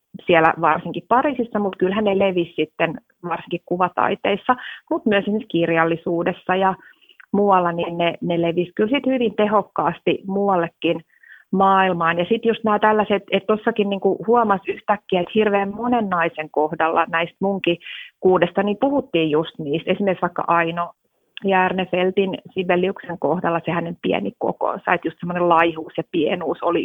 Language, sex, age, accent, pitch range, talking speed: Finnish, female, 30-49, native, 170-210 Hz, 140 wpm